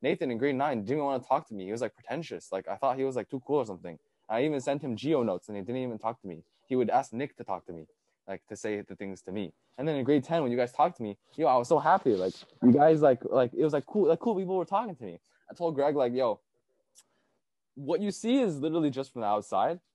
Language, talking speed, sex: English, 300 wpm, male